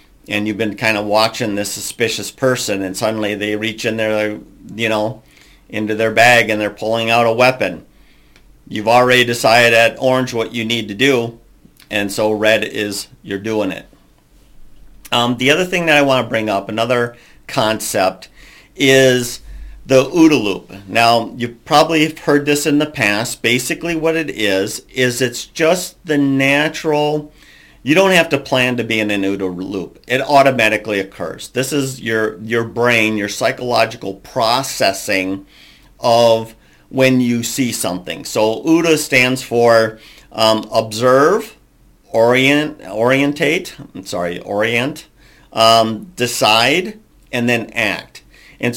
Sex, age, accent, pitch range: male, 50-69, American, 110-130 Hz